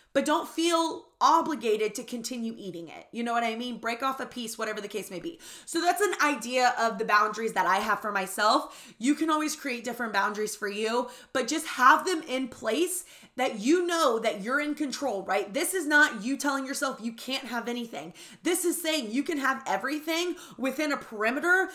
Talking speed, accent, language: 210 wpm, American, English